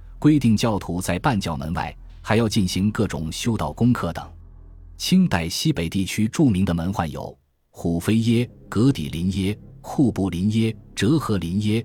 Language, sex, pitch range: Chinese, male, 85-120 Hz